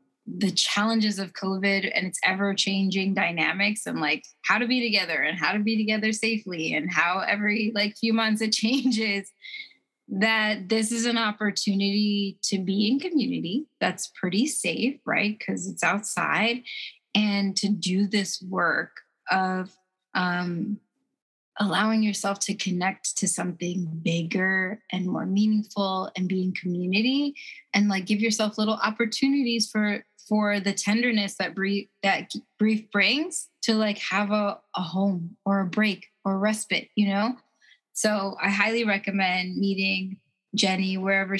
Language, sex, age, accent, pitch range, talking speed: English, female, 20-39, American, 190-220 Hz, 145 wpm